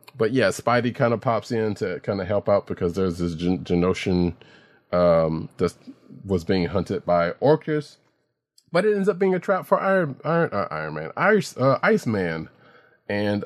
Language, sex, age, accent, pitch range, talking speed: English, male, 30-49, American, 90-120 Hz, 185 wpm